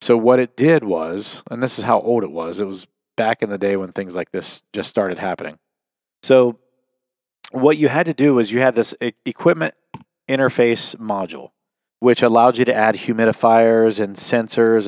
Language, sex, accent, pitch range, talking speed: English, male, American, 100-125 Hz, 185 wpm